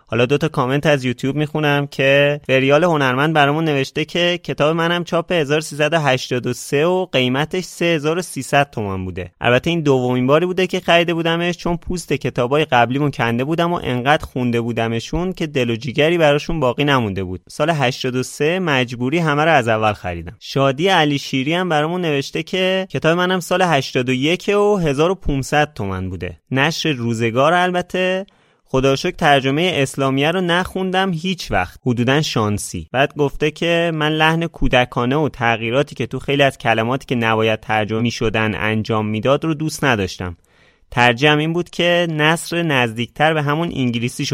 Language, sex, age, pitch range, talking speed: Persian, male, 20-39, 120-165 Hz, 155 wpm